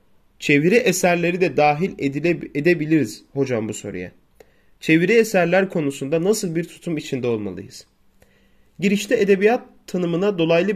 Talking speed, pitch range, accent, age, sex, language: 115 wpm, 145-205 Hz, native, 30-49, male, Turkish